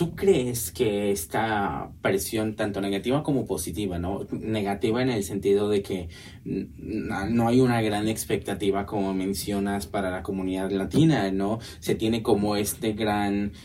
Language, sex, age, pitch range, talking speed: Spanish, male, 20-39, 100-120 Hz, 155 wpm